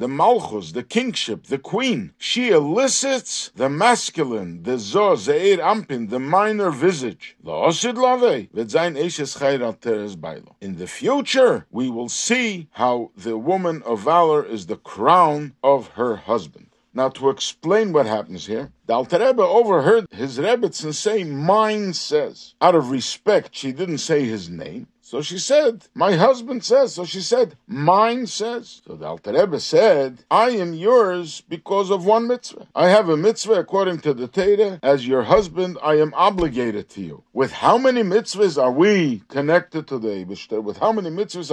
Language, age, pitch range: English, 50-69, 135-215 Hz